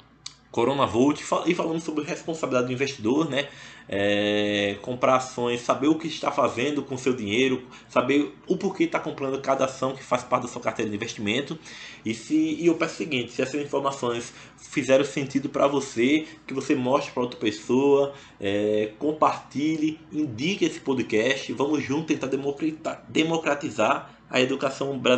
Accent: Brazilian